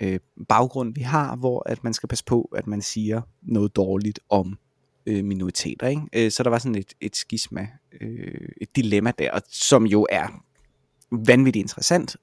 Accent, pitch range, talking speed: native, 110-140 Hz, 145 wpm